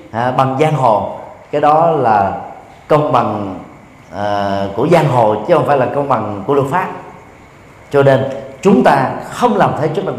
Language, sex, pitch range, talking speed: Vietnamese, male, 125-185 Hz, 170 wpm